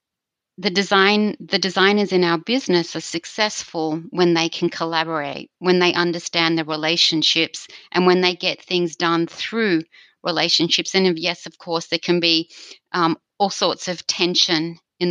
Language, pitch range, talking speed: English, 165-185 Hz, 155 wpm